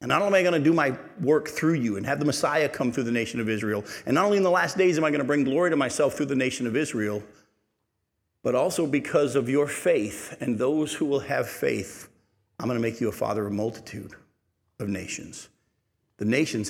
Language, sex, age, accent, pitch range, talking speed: English, male, 50-69, American, 105-145 Hz, 240 wpm